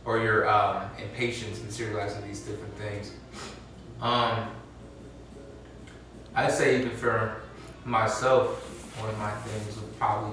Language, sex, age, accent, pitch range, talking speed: English, male, 20-39, American, 105-120 Hz, 120 wpm